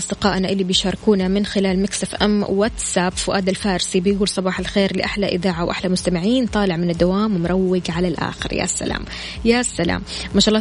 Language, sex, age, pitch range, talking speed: Arabic, female, 20-39, 185-215 Hz, 170 wpm